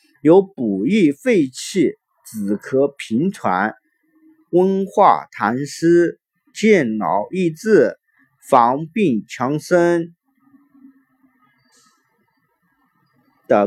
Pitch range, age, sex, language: 150-240 Hz, 50-69, male, Chinese